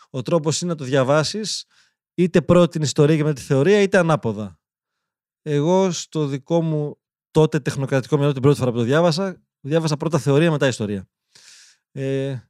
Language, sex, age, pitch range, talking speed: Greek, male, 20-39, 140-170 Hz, 170 wpm